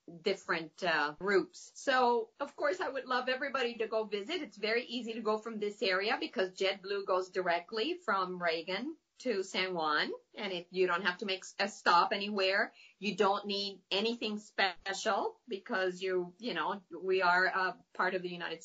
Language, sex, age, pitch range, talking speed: English, female, 40-59, 185-230 Hz, 185 wpm